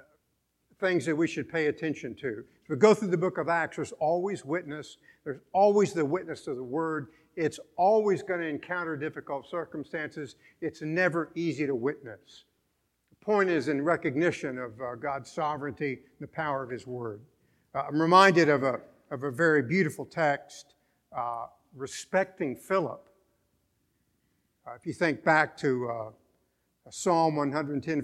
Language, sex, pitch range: English, male, 140-175 Hz